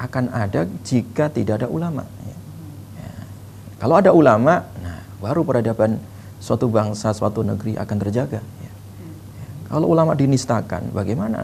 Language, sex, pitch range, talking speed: Indonesian, male, 105-120 Hz, 135 wpm